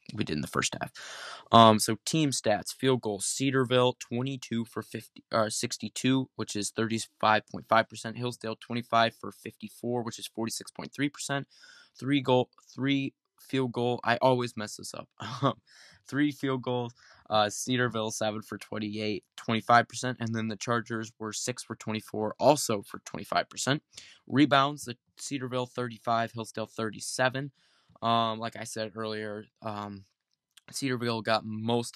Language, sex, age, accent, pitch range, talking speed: English, male, 20-39, American, 110-125 Hz, 145 wpm